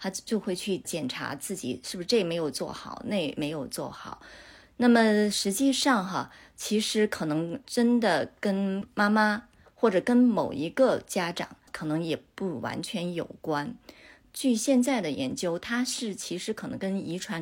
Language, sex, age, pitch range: Chinese, female, 30-49, 175-245 Hz